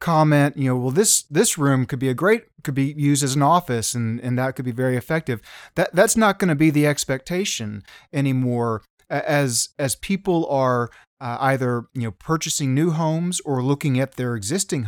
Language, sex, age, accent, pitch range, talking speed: English, male, 30-49, American, 125-145 Hz, 200 wpm